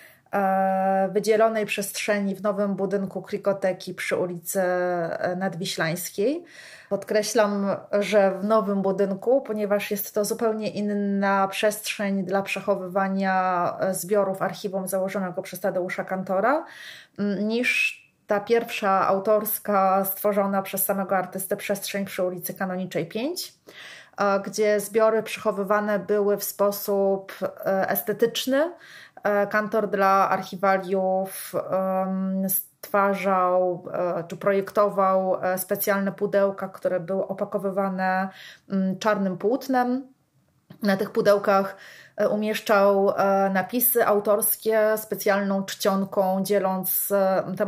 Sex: female